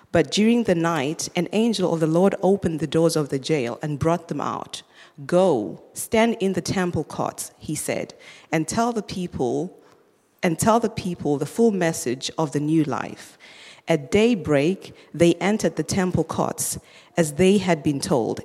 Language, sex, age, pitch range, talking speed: English, female, 40-59, 155-195 Hz, 175 wpm